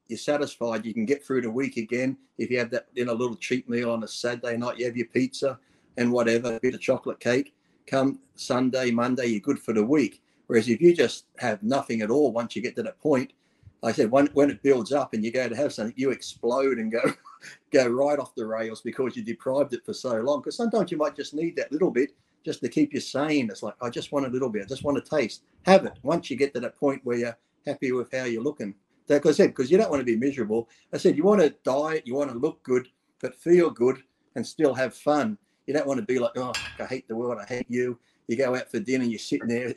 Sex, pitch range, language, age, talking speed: male, 120-145 Hz, English, 50-69, 270 wpm